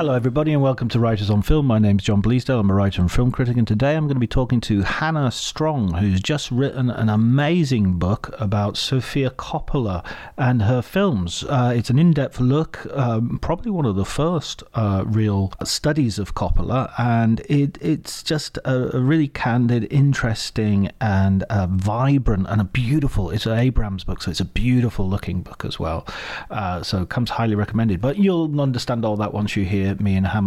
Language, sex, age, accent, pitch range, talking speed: English, male, 40-59, British, 100-140 Hz, 190 wpm